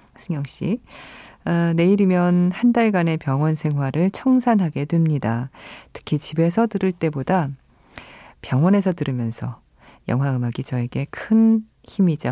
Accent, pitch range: native, 130-170 Hz